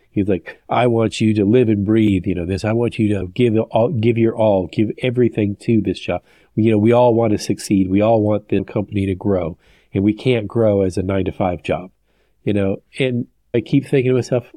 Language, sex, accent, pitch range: English, male, American, 95-120 Hz